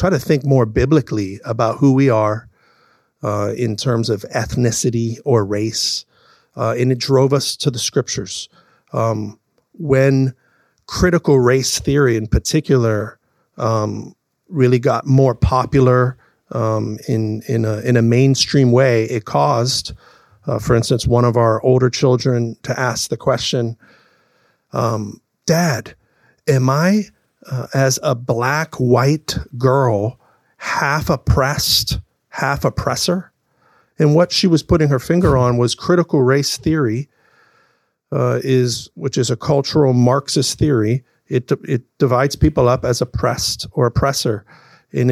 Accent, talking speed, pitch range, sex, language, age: American, 130 wpm, 115-145 Hz, male, English, 50-69